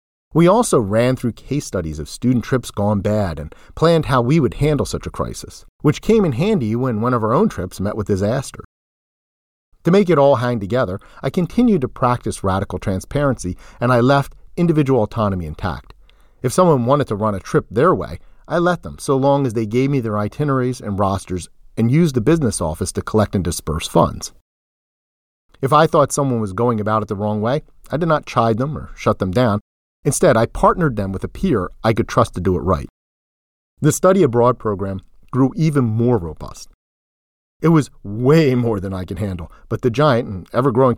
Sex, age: male, 40-59